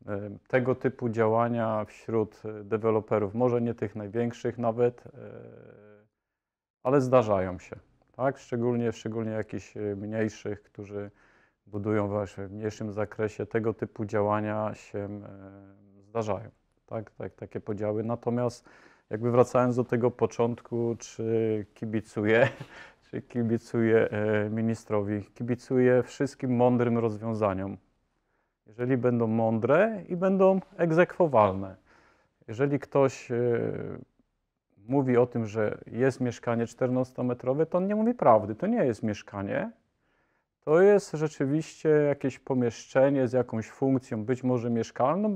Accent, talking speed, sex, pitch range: native, 110 wpm, male, 110-135 Hz